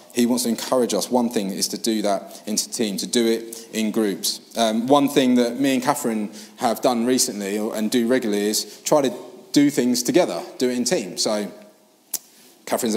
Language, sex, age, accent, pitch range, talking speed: English, male, 20-39, British, 115-150 Hz, 200 wpm